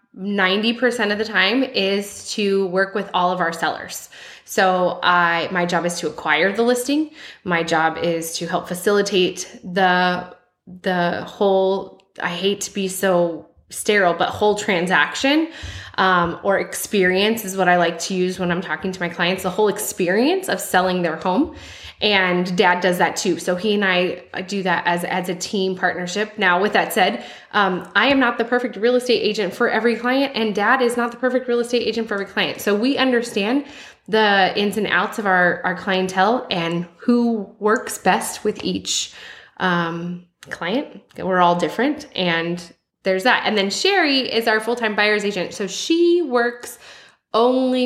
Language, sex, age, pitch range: English, female, 20-39, 180-225 Hz